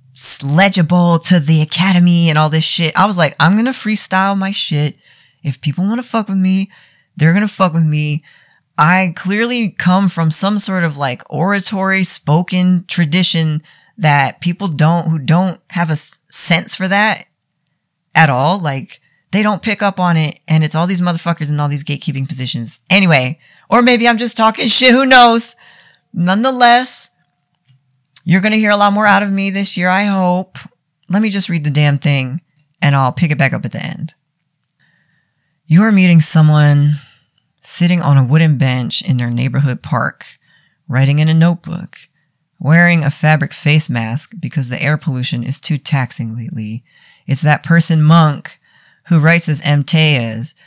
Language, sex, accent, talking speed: English, female, American, 175 wpm